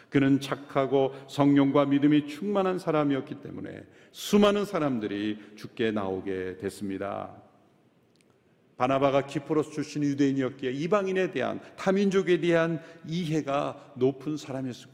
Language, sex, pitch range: Korean, male, 150-220 Hz